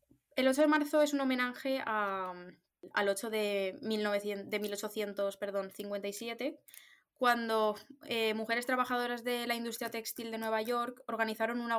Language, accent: Spanish, Spanish